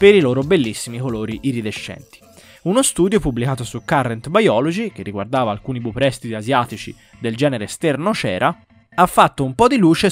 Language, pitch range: Italian, 115-165 Hz